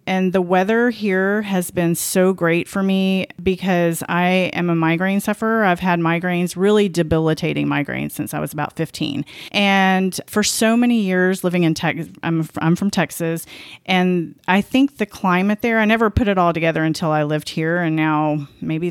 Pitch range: 160-195 Hz